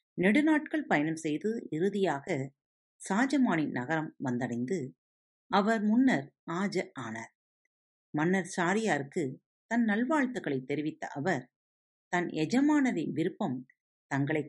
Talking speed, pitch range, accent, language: 85 wpm, 155-235 Hz, native, Tamil